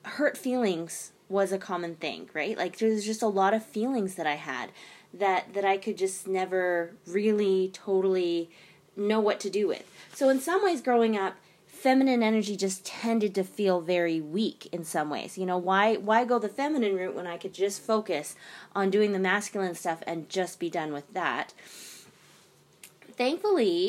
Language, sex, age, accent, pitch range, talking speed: English, female, 20-39, American, 185-225 Hz, 180 wpm